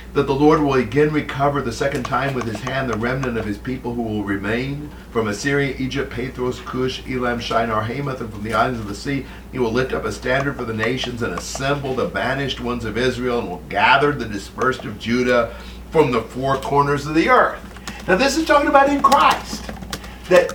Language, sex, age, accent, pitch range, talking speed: English, male, 50-69, American, 110-150 Hz, 215 wpm